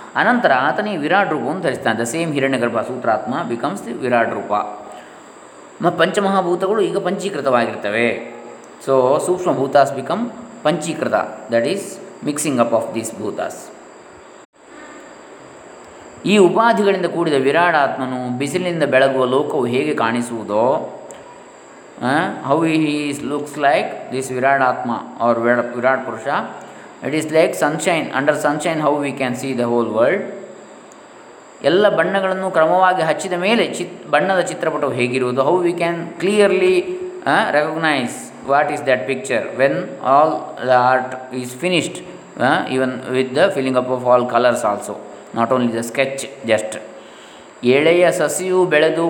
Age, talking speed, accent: 20-39, 130 wpm, native